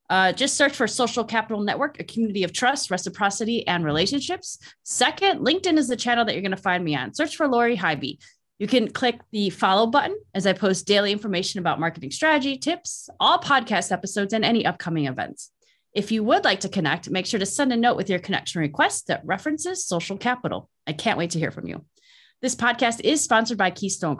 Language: English